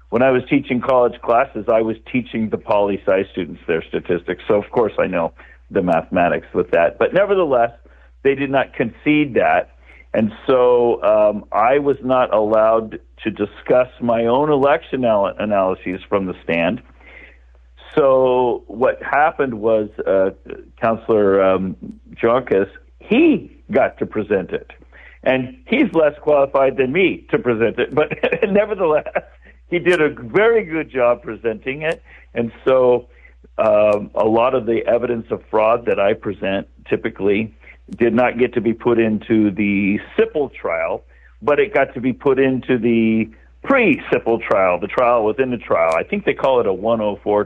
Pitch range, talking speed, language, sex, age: 105-140 Hz, 160 wpm, English, male, 50-69